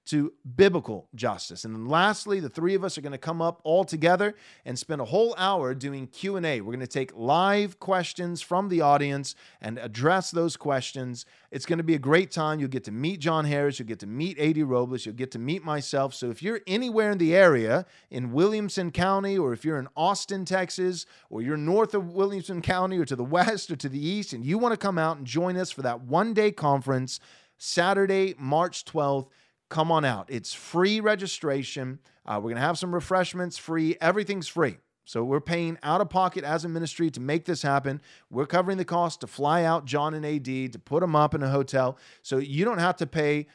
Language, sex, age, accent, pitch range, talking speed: English, male, 30-49, American, 135-185 Hz, 220 wpm